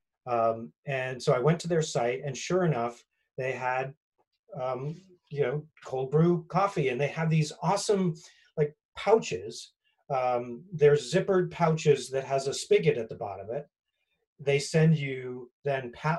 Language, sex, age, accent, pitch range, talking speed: English, male, 30-49, American, 130-170 Hz, 160 wpm